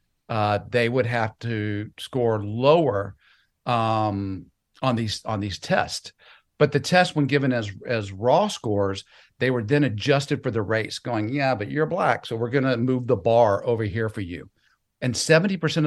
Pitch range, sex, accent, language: 100-130 Hz, male, American, English